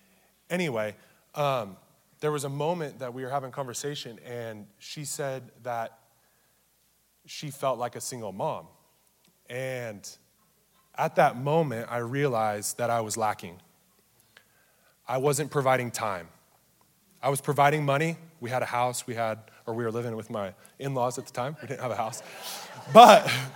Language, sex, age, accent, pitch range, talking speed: English, male, 20-39, American, 120-155 Hz, 160 wpm